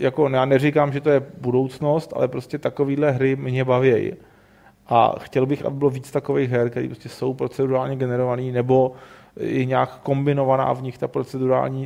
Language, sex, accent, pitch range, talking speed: Czech, male, native, 120-135 Hz, 170 wpm